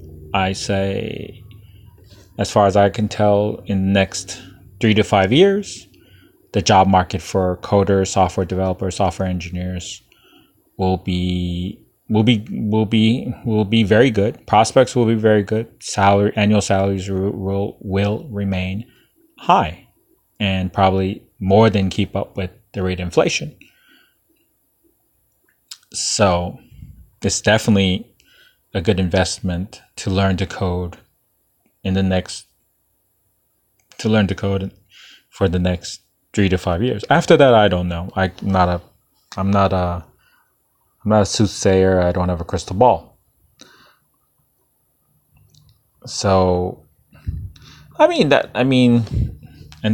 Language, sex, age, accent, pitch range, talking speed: English, male, 30-49, American, 95-105 Hz, 130 wpm